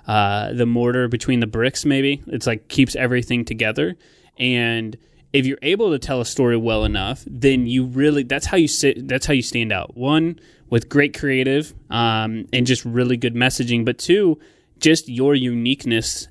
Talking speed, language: 175 wpm, English